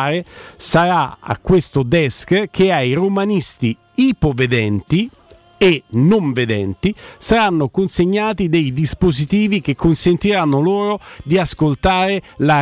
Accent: native